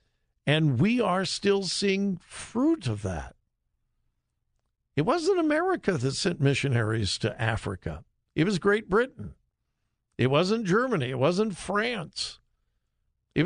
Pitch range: 115-175 Hz